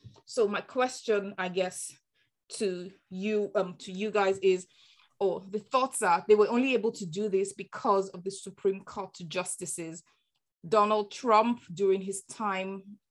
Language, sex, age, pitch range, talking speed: English, female, 20-39, 190-210 Hz, 160 wpm